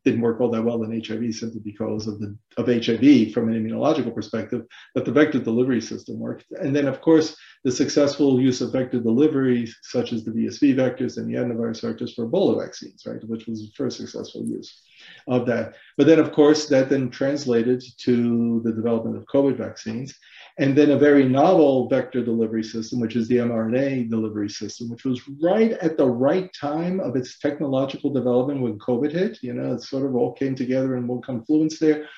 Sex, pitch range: male, 115-140 Hz